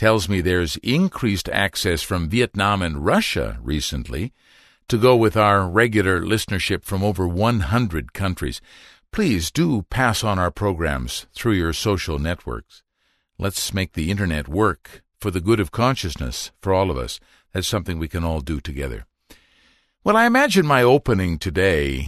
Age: 50-69